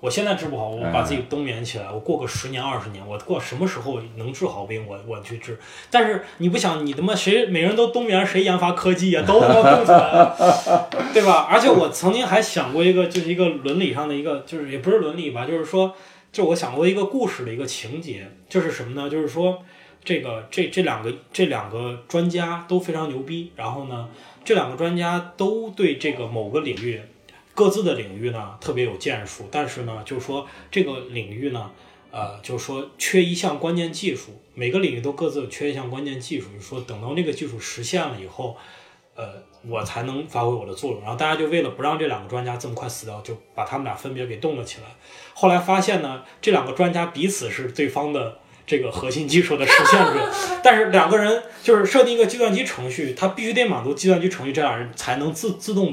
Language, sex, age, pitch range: Chinese, male, 20-39, 120-185 Hz